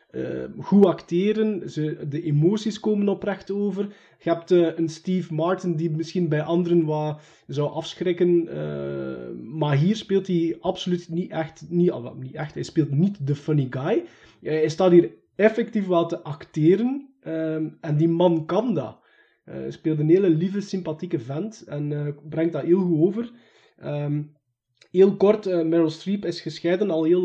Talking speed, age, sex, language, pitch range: 170 wpm, 20-39, male, Dutch, 150-185 Hz